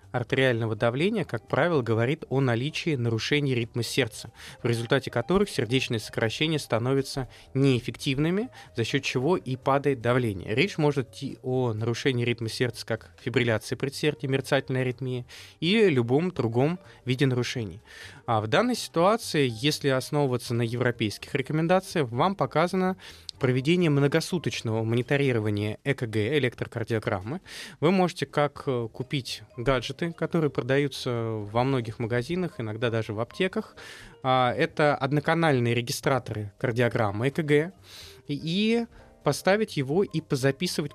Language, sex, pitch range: Russian, male, 120-155 Hz